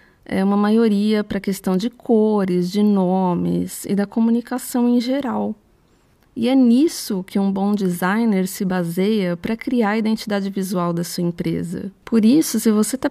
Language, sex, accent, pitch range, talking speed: Portuguese, female, Brazilian, 190-235 Hz, 170 wpm